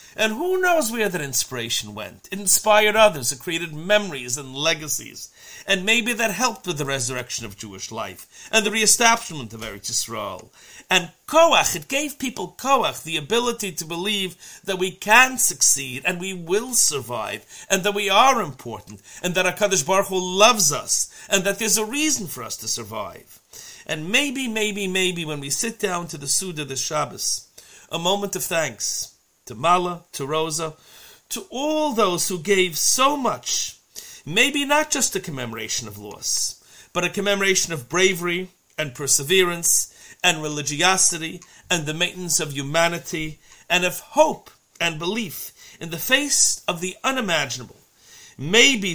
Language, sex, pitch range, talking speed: English, male, 150-210 Hz, 160 wpm